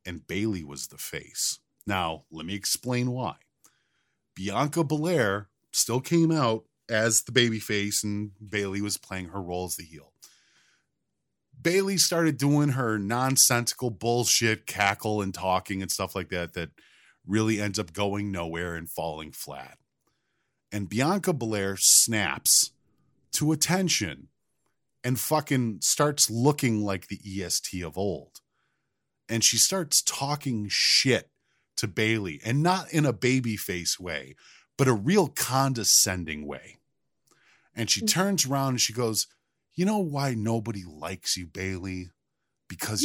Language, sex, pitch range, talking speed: English, male, 95-150 Hz, 140 wpm